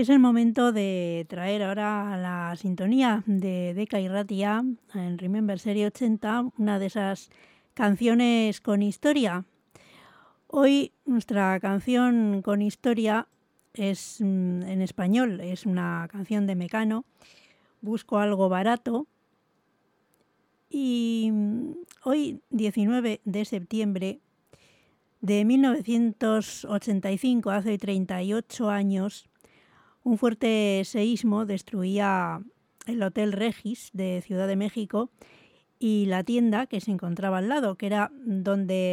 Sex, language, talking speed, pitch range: female, English, 110 wpm, 195-230 Hz